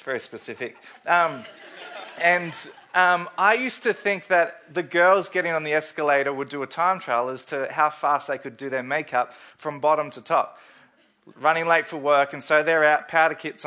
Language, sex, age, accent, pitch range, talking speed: English, male, 20-39, Australian, 135-175 Hz, 195 wpm